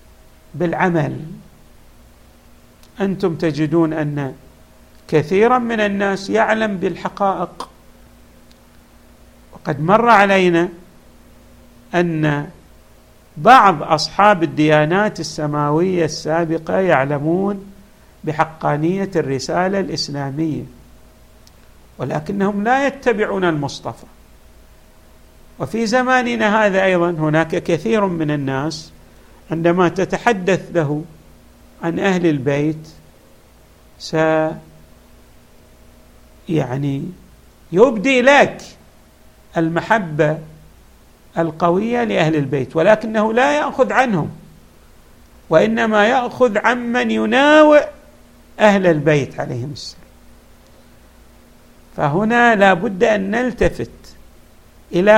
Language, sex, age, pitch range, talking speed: Arabic, male, 50-69, 145-210 Hz, 70 wpm